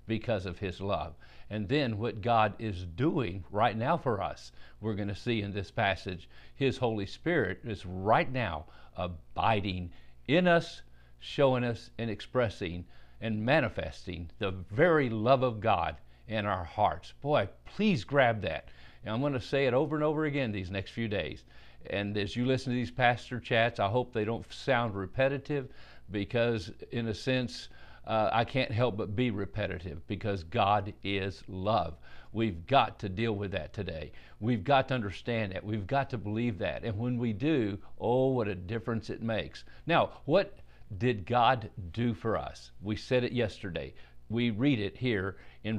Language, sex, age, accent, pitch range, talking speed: English, male, 50-69, American, 95-125 Hz, 175 wpm